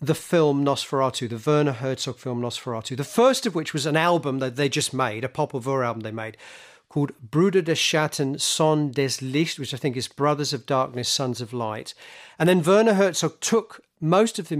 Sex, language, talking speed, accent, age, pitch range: male, English, 200 wpm, British, 40-59, 125-160 Hz